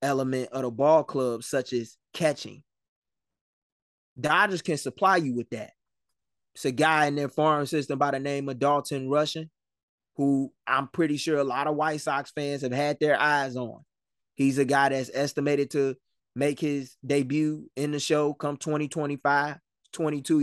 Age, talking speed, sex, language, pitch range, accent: 20-39, 165 wpm, male, English, 130-150 Hz, American